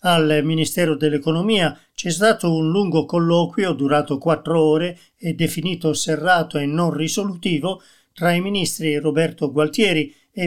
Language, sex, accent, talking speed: Italian, male, native, 130 wpm